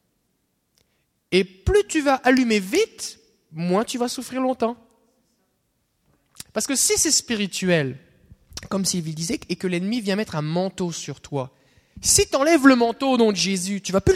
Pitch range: 180-265 Hz